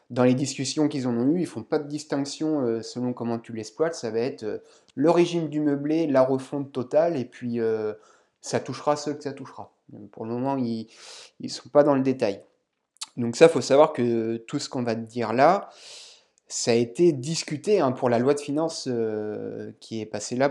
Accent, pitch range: French, 110-145 Hz